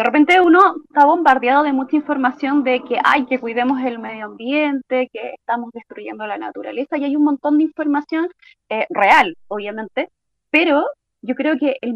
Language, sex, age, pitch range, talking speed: Spanish, female, 20-39, 245-295 Hz, 175 wpm